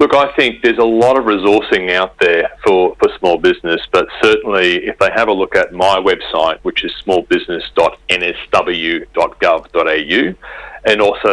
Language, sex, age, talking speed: English, male, 40-59, 155 wpm